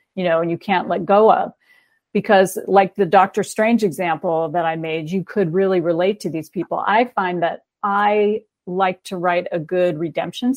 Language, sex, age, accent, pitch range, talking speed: English, female, 40-59, American, 175-200 Hz, 195 wpm